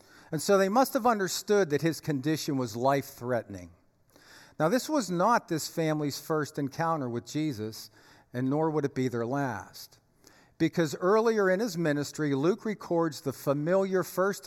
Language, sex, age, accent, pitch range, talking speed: English, male, 50-69, American, 125-165 Hz, 160 wpm